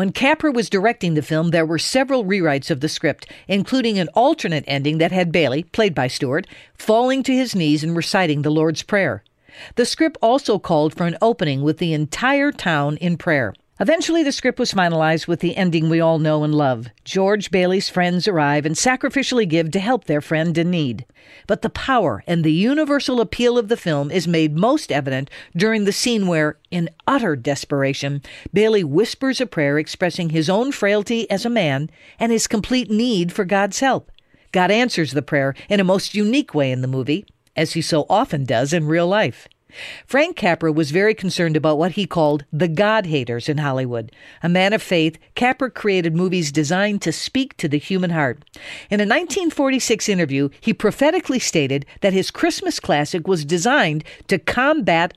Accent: American